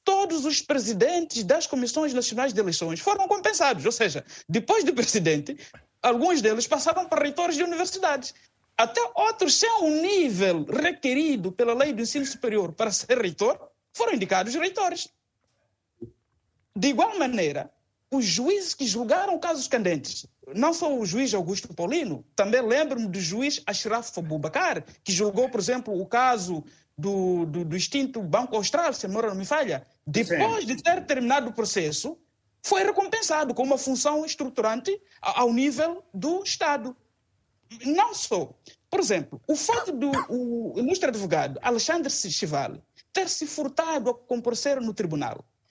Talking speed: 145 wpm